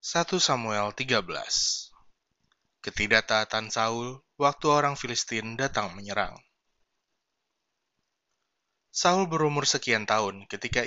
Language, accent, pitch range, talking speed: Indonesian, native, 110-140 Hz, 85 wpm